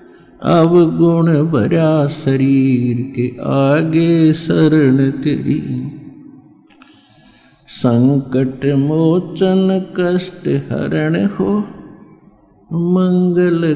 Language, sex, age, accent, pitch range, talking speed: Hindi, male, 50-69, native, 165-225 Hz, 60 wpm